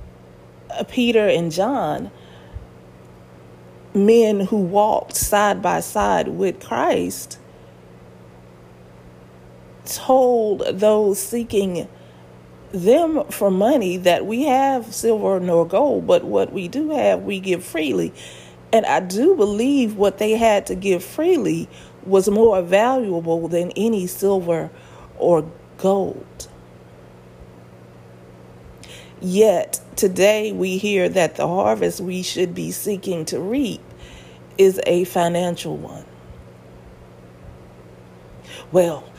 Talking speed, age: 105 wpm, 40-59